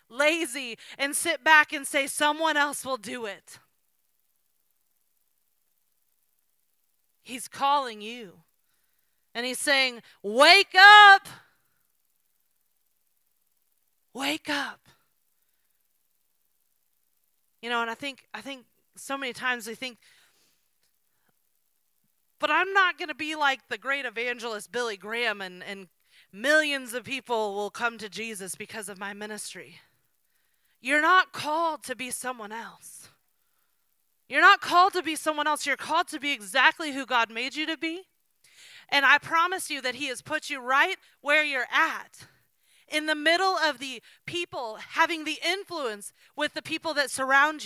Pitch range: 230-315 Hz